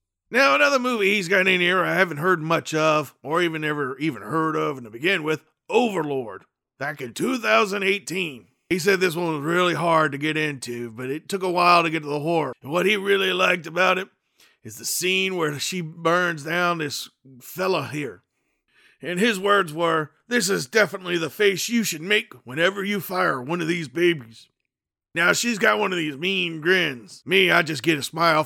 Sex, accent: male, American